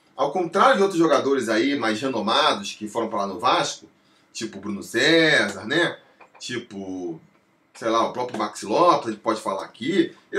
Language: Portuguese